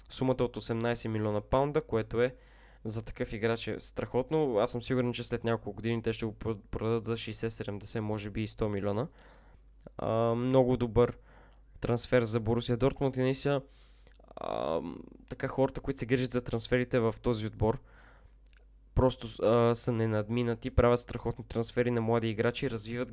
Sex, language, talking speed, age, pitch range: male, Bulgarian, 155 wpm, 20-39, 110-125 Hz